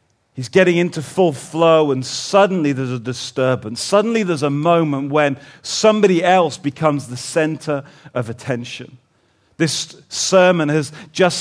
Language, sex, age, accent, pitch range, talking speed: English, male, 40-59, British, 135-170 Hz, 135 wpm